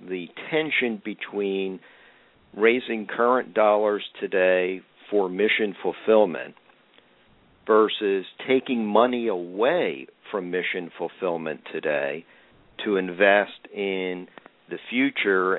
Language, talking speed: English, 90 wpm